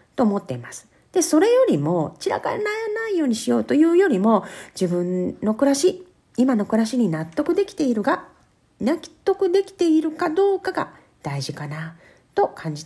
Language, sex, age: Japanese, female, 40-59